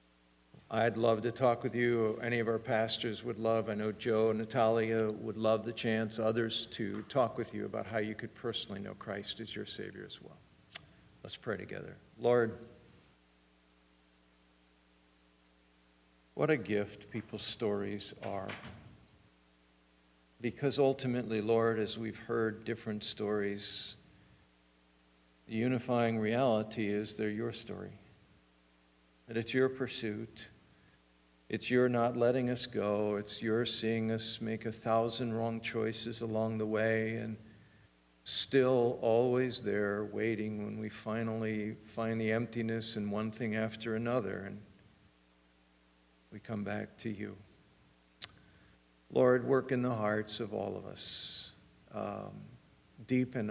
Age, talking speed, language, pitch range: 60-79, 130 wpm, English, 100-115 Hz